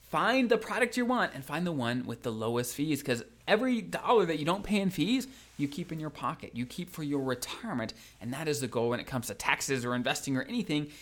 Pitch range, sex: 115-175 Hz, male